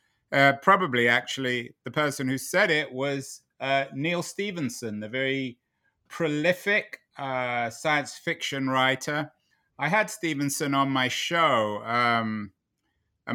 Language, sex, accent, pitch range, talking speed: English, male, British, 110-135 Hz, 120 wpm